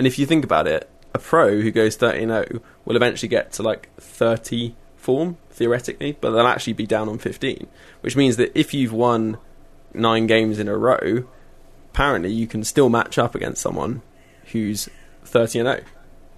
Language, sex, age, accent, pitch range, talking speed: English, male, 20-39, British, 110-125 Hz, 170 wpm